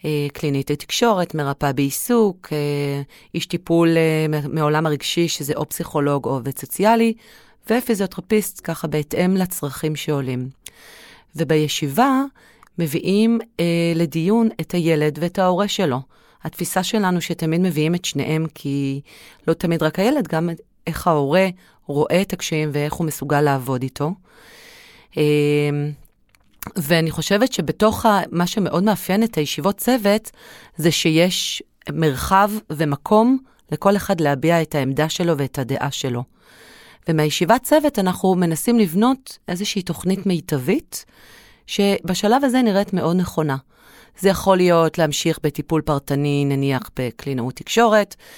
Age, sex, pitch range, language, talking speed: 30-49, female, 150-190 Hz, Hebrew, 120 wpm